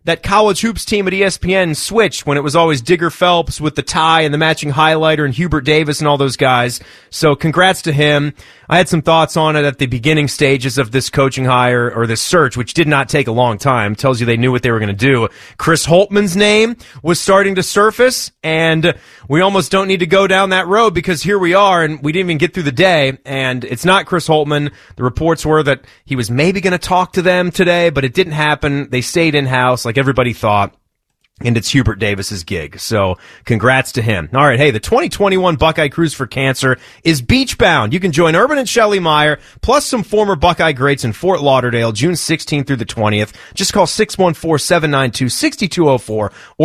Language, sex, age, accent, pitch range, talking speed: English, male, 30-49, American, 130-180 Hz, 210 wpm